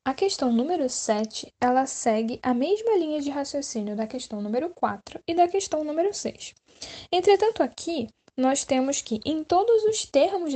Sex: female